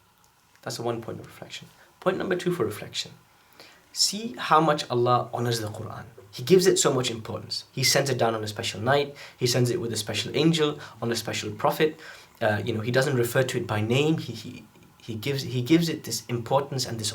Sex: male